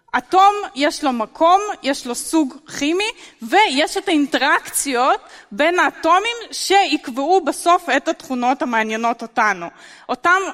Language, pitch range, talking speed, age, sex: Hebrew, 260-345 Hz, 115 wpm, 30-49, female